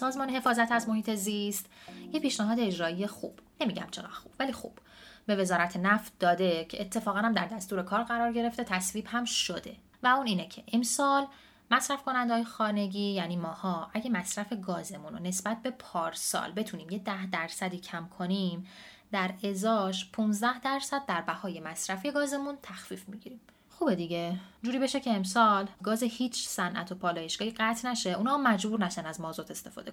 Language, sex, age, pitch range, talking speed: Persian, female, 20-39, 185-230 Hz, 165 wpm